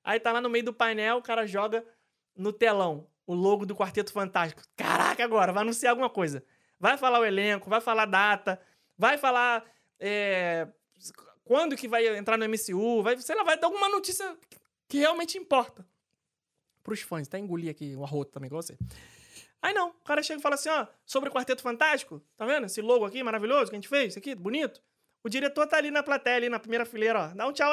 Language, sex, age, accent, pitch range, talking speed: Portuguese, male, 20-39, Brazilian, 205-275 Hz, 215 wpm